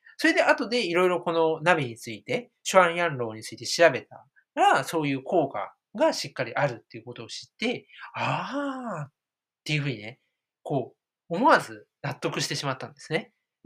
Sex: male